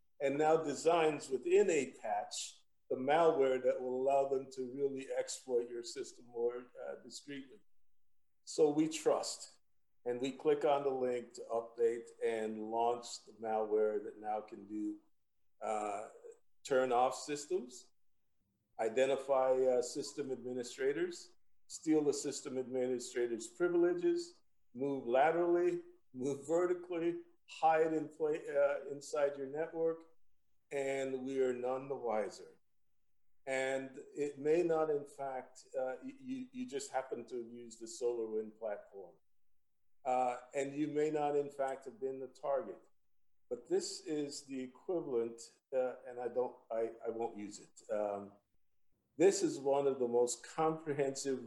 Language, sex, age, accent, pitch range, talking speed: English, male, 50-69, American, 120-160 Hz, 135 wpm